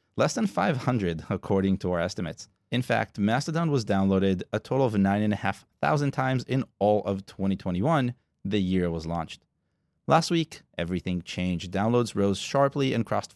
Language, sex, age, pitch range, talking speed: English, male, 30-49, 95-135 Hz, 155 wpm